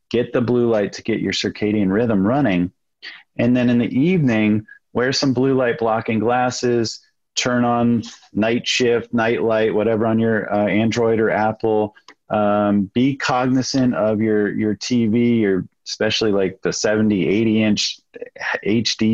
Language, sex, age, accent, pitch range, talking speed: English, male, 30-49, American, 105-120 Hz, 150 wpm